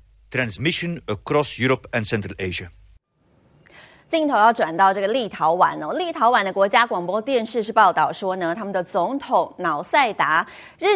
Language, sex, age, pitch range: Chinese, female, 30-49, 170-250 Hz